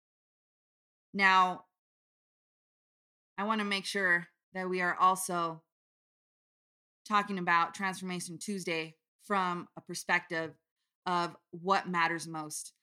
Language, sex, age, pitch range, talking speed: English, female, 20-39, 160-185 Hz, 100 wpm